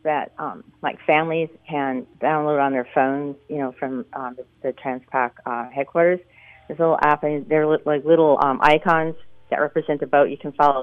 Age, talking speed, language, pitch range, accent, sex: 40-59, 200 wpm, English, 135-160 Hz, American, female